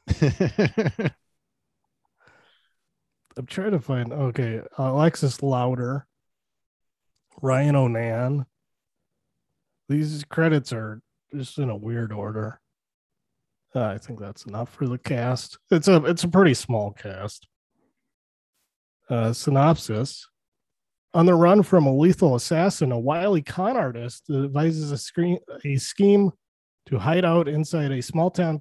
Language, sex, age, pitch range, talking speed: English, male, 30-49, 125-170 Hz, 120 wpm